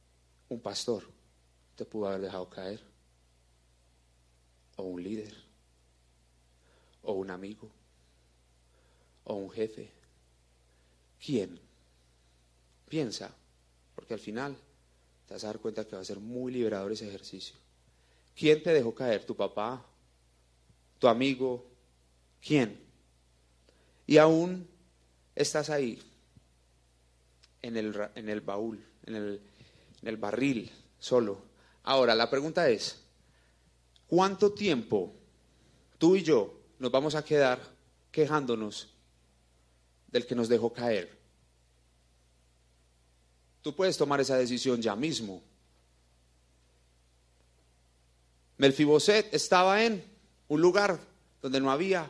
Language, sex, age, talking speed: Spanish, male, 30-49, 105 wpm